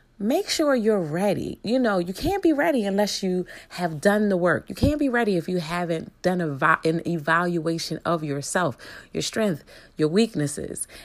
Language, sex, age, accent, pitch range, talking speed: English, female, 30-49, American, 160-215 Hz, 175 wpm